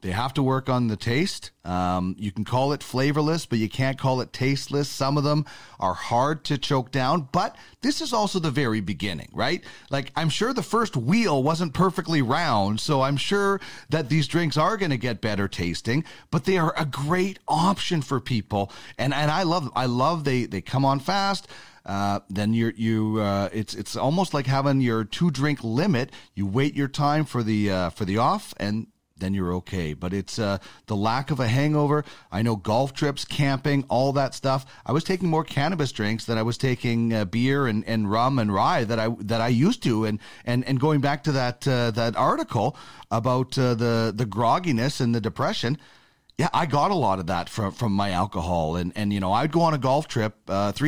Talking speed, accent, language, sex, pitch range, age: 215 wpm, American, English, male, 110-150 Hz, 40-59